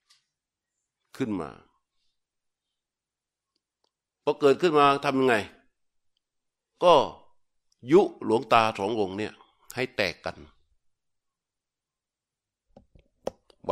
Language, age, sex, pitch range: Thai, 60-79, male, 95-135 Hz